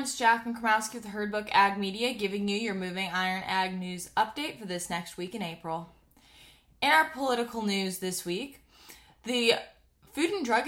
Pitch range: 180-230 Hz